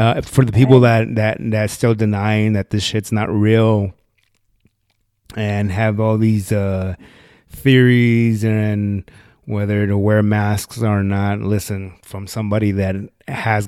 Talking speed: 140 wpm